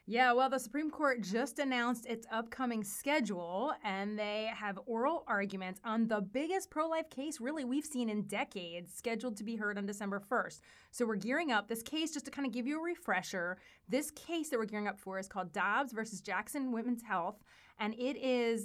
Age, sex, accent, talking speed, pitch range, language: 30-49, female, American, 205 wpm, 205-260 Hz, English